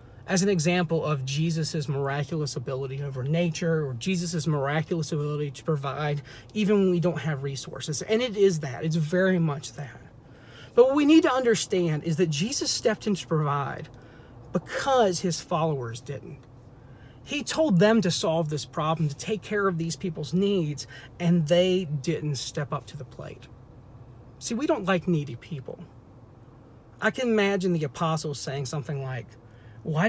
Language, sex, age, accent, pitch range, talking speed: English, male, 40-59, American, 140-190 Hz, 165 wpm